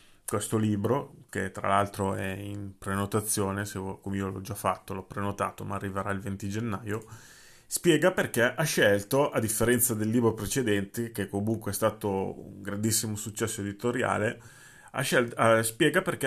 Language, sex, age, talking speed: Italian, male, 30-49, 155 wpm